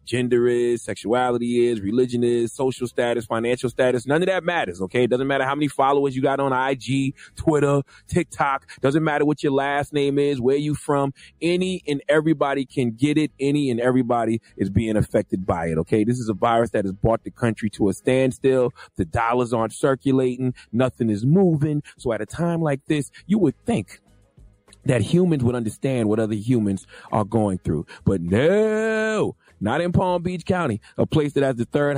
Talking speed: 195 wpm